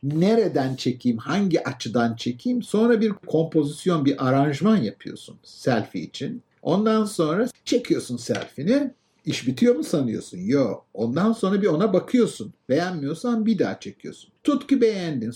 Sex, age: male, 50-69